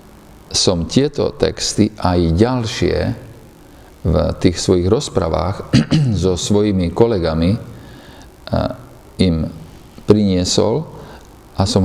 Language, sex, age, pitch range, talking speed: Slovak, male, 50-69, 90-120 Hz, 80 wpm